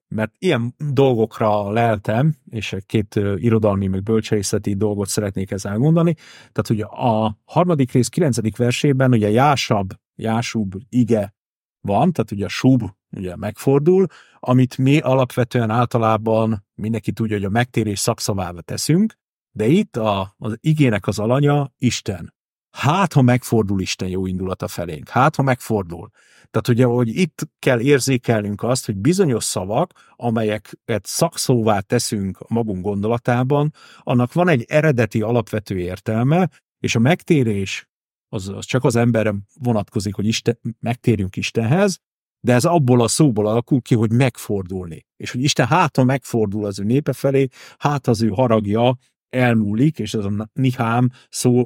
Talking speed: 145 wpm